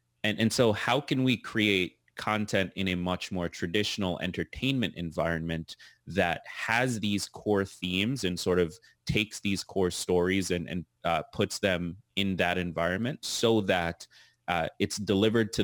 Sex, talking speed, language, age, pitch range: male, 155 wpm, English, 30-49, 85-100 Hz